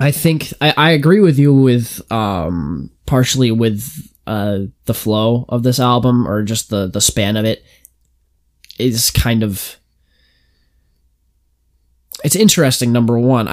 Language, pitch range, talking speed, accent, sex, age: English, 110-150 Hz, 135 wpm, American, male, 10-29